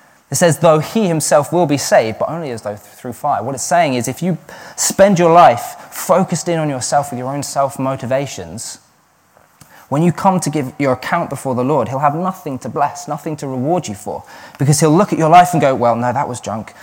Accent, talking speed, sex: British, 230 wpm, male